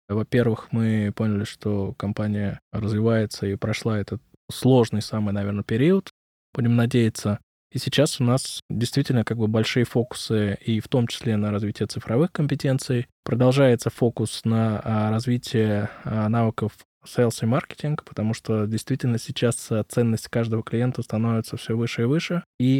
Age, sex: 20-39, male